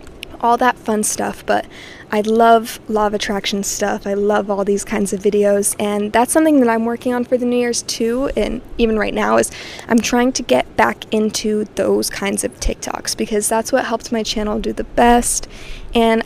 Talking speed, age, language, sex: 205 wpm, 20-39, English, female